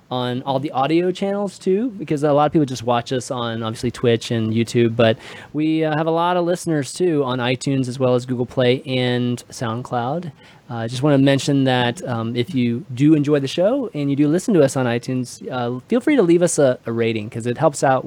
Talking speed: 230 wpm